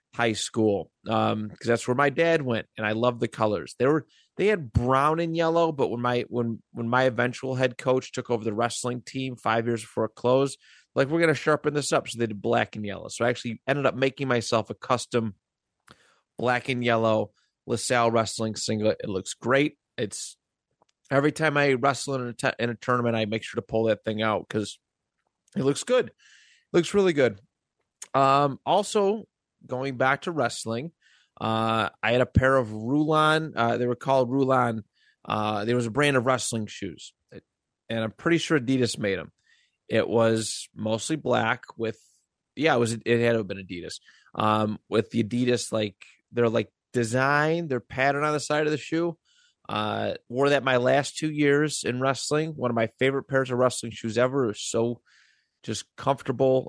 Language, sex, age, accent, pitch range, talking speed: English, male, 30-49, American, 115-140 Hz, 195 wpm